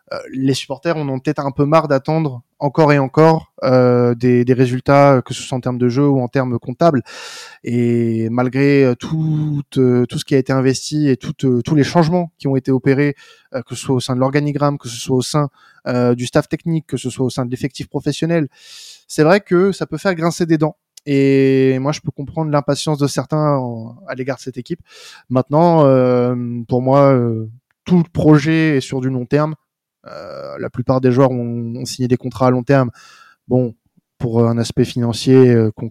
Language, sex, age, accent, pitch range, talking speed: French, male, 20-39, French, 125-150 Hz, 215 wpm